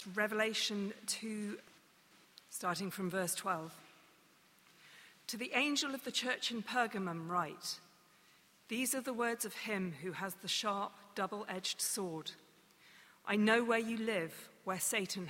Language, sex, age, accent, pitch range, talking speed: English, female, 40-59, British, 180-225 Hz, 135 wpm